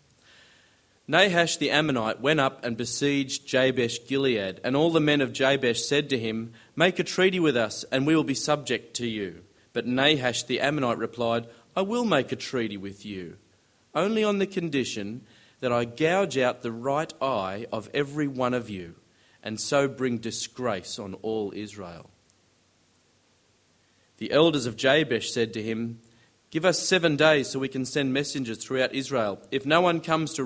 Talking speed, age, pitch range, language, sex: 175 wpm, 30-49, 115-145 Hz, English, male